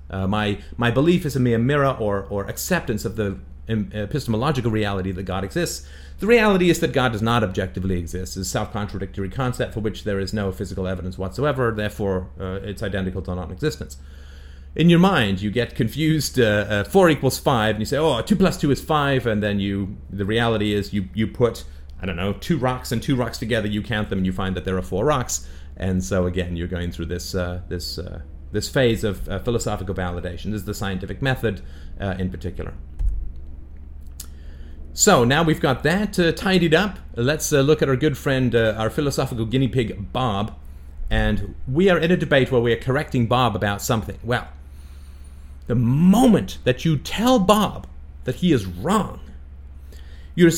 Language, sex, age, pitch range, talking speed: English, male, 30-49, 90-130 Hz, 195 wpm